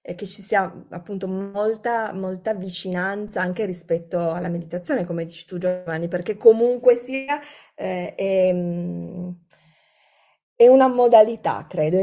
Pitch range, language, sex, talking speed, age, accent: 175-215 Hz, Italian, female, 125 wpm, 30-49, native